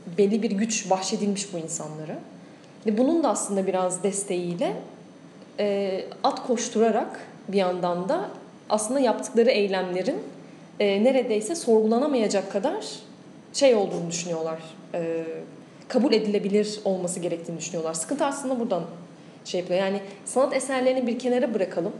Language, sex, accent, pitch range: Turkish, female, native, 180-230 Hz